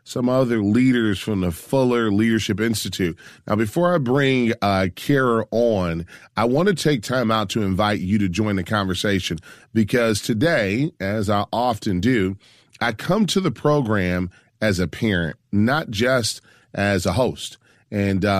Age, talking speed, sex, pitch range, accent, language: 30-49, 155 wpm, male, 95-125 Hz, American, English